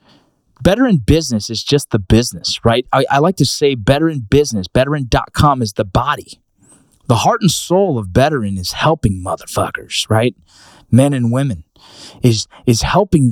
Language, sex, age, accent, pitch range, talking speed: English, male, 20-39, American, 110-145 Hz, 160 wpm